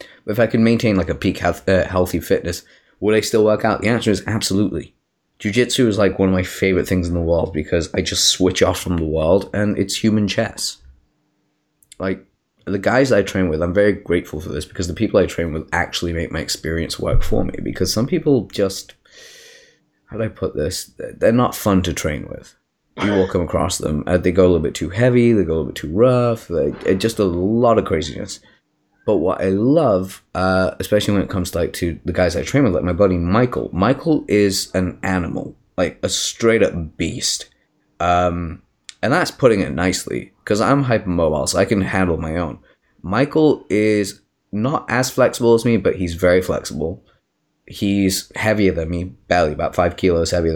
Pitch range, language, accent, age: 85-105 Hz, English, British, 20-39